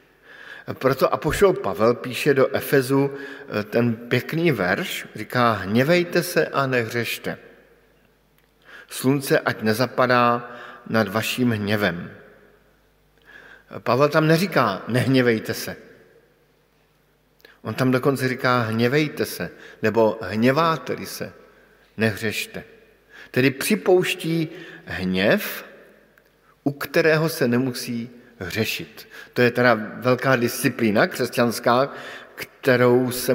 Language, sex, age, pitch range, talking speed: Slovak, male, 50-69, 115-150 Hz, 95 wpm